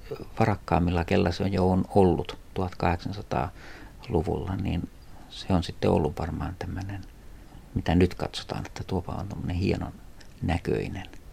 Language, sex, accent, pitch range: Finnish, male, native, 85-100 Hz